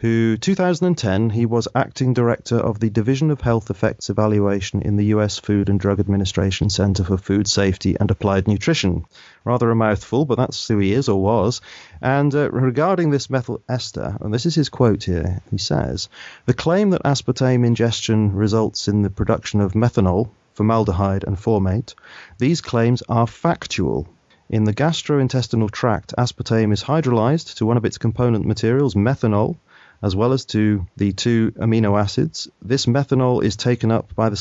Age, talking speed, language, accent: 30-49, 170 wpm, English, British